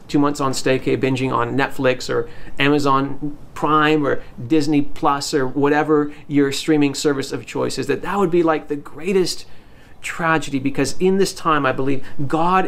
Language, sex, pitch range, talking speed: English, male, 140-165 Hz, 170 wpm